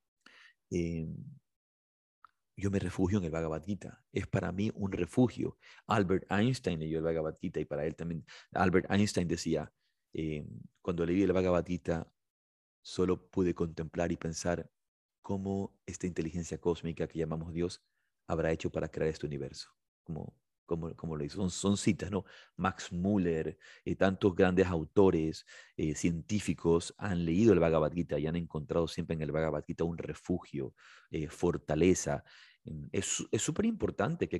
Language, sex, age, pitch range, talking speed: Spanish, male, 30-49, 80-95 Hz, 155 wpm